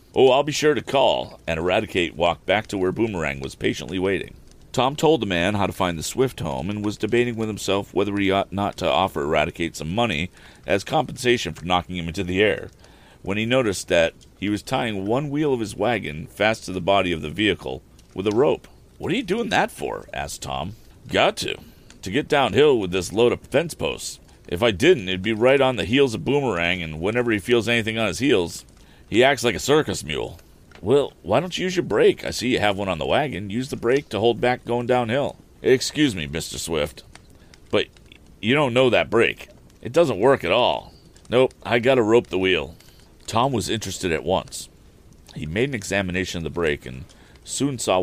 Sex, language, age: male, English, 40-59